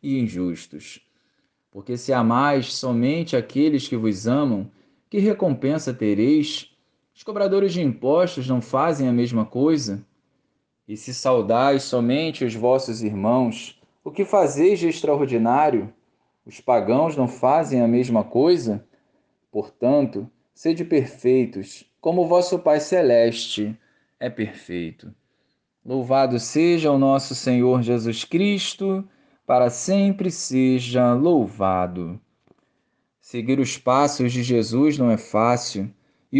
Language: Portuguese